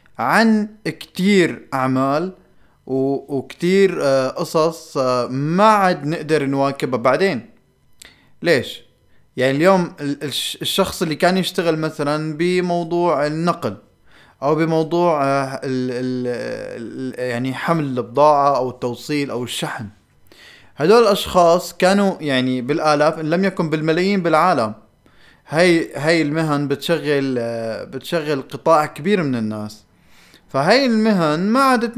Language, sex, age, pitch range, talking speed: Arabic, male, 20-39, 130-175 Hz, 100 wpm